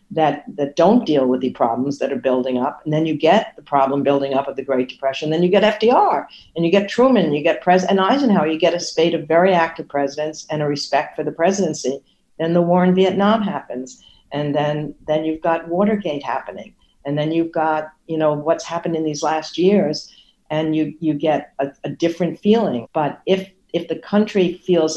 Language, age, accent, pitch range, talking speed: English, 60-79, American, 135-170 Hz, 215 wpm